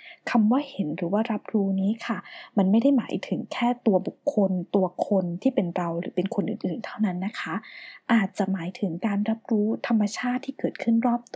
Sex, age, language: female, 20-39, Thai